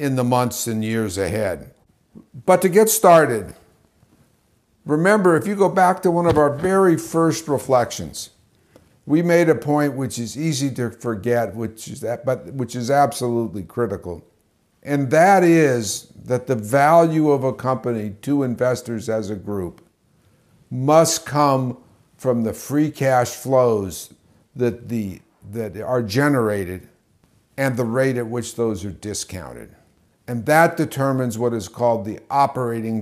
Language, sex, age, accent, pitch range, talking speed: English, male, 60-79, American, 115-145 Hz, 145 wpm